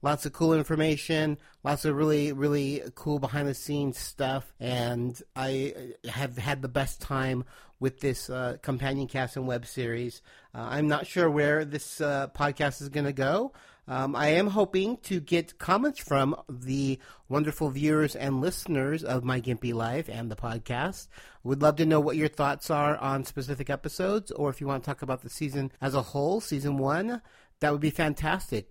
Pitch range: 125-155 Hz